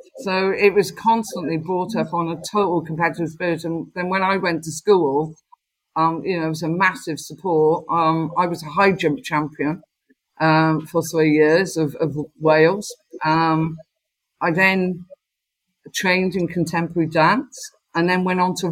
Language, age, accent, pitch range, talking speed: English, 50-69, British, 160-190 Hz, 165 wpm